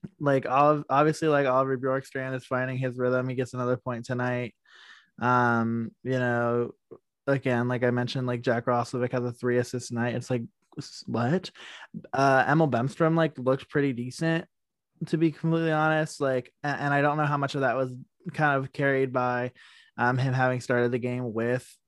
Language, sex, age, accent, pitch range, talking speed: English, male, 20-39, American, 125-145 Hz, 180 wpm